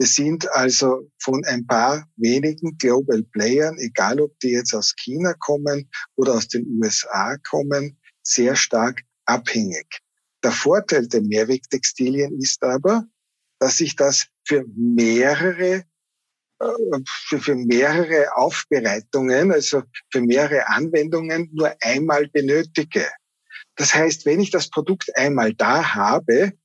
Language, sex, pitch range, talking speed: German, male, 130-170 Hz, 120 wpm